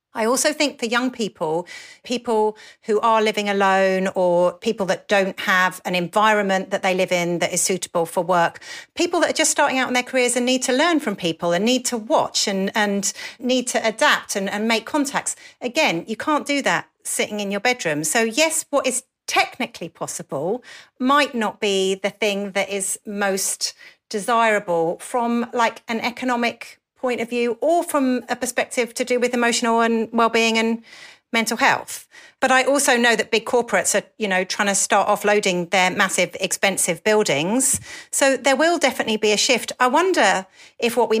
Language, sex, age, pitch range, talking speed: English, female, 40-59, 195-250 Hz, 190 wpm